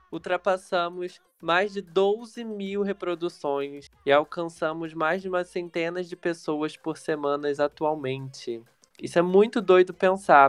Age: 20-39